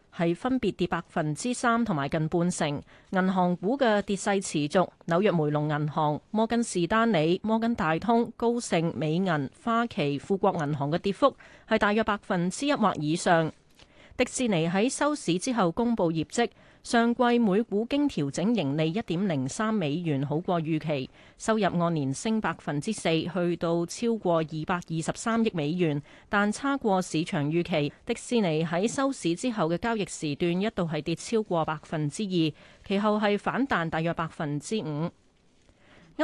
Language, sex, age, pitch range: Chinese, female, 30-49, 160-225 Hz